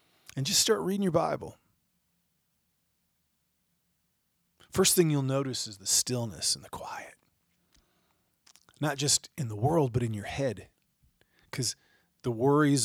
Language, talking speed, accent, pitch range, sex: English, 130 wpm, American, 110-140 Hz, male